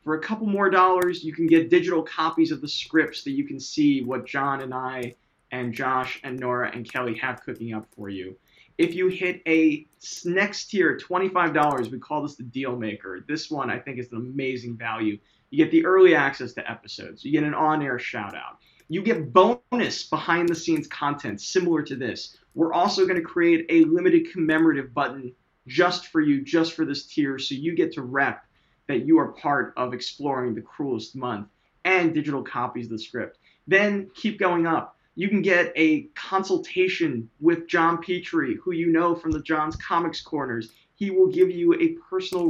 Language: English